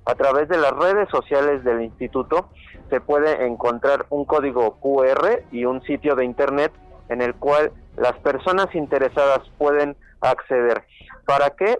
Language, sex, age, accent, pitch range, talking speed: Spanish, male, 40-59, Mexican, 130-155 Hz, 145 wpm